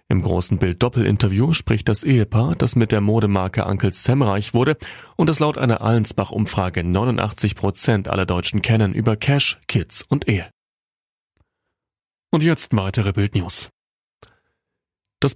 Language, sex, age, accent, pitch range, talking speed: German, male, 30-49, German, 100-135 Hz, 125 wpm